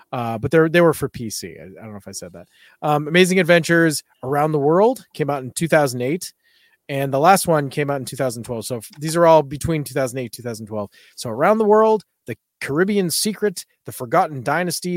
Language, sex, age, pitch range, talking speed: English, male, 30-49, 130-175 Hz, 210 wpm